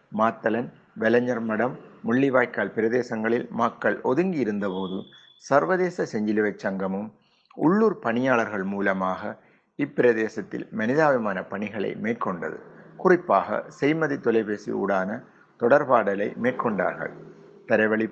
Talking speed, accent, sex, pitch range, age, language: 85 wpm, native, male, 105-130 Hz, 50-69, Tamil